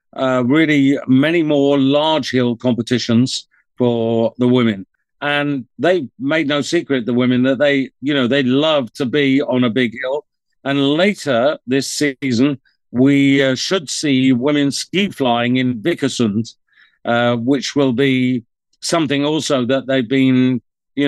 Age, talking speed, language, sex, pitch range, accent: 50-69, 145 wpm, English, male, 125-145 Hz, British